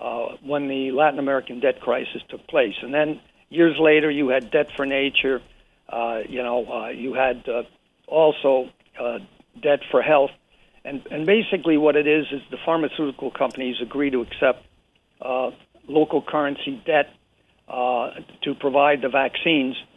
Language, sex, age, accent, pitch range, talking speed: English, male, 60-79, American, 135-160 Hz, 155 wpm